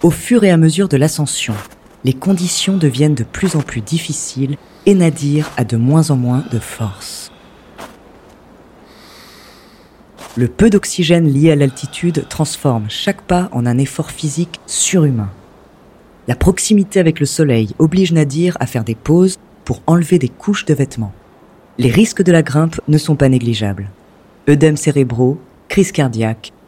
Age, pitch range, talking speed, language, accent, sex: 40-59, 130-185 Hz, 155 wpm, French, French, female